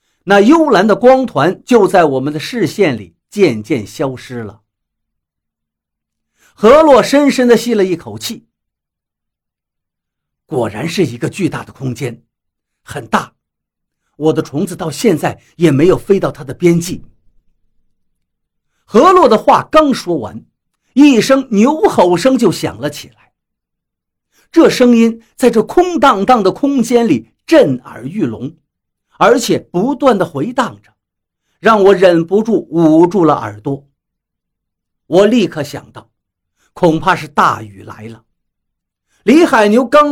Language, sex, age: Chinese, male, 50-69